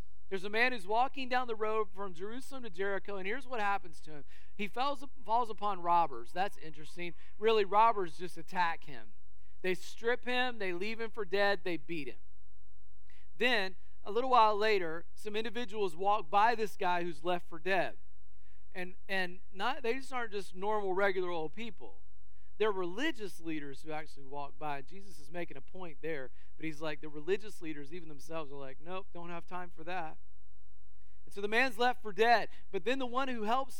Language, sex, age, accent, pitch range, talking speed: English, male, 40-59, American, 155-220 Hz, 195 wpm